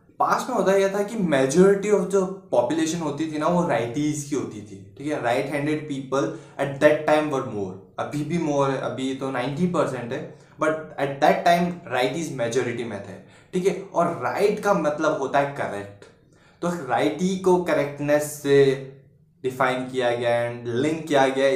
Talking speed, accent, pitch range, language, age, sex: 185 wpm, native, 130-165 Hz, Hindi, 20-39, male